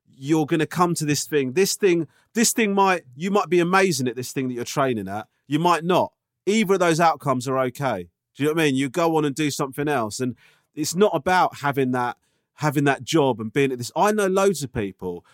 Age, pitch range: 30-49, 125-165 Hz